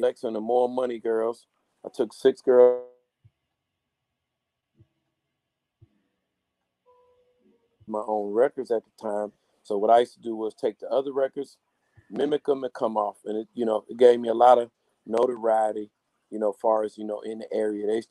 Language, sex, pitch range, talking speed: English, male, 110-125 Hz, 180 wpm